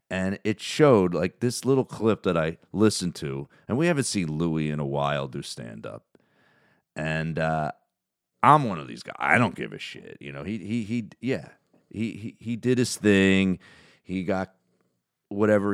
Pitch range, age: 85-120 Hz, 40-59